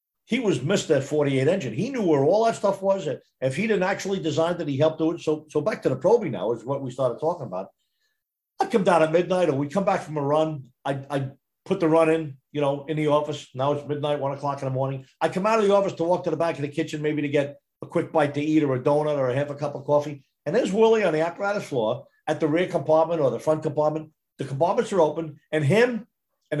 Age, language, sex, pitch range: 50-69, English, male, 145-175 Hz